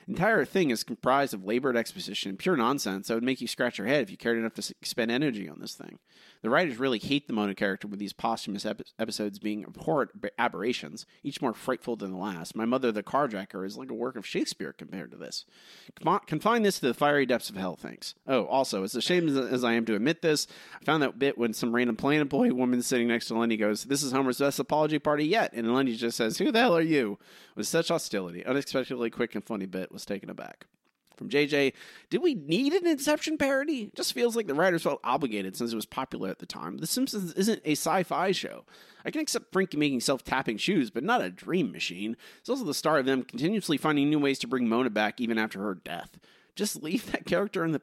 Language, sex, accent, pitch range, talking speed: English, male, American, 110-150 Hz, 235 wpm